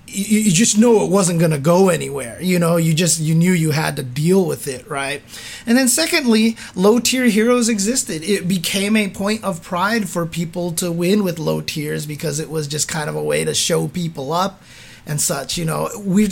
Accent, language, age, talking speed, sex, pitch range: American, English, 30-49, 215 wpm, male, 160-205 Hz